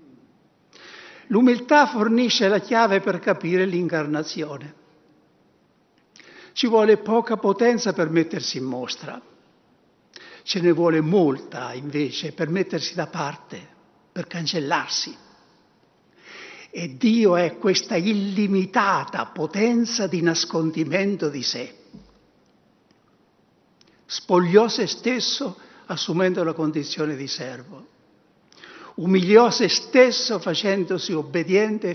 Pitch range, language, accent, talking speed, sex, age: 165-225 Hz, Italian, native, 90 wpm, male, 60-79